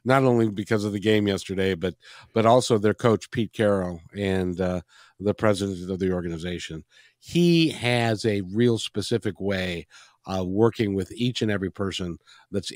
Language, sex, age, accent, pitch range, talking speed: English, male, 50-69, American, 95-130 Hz, 165 wpm